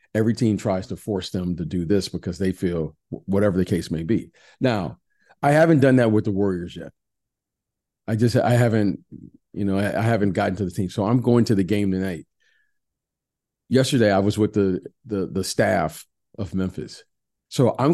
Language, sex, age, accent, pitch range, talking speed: English, male, 40-59, American, 95-120 Hz, 190 wpm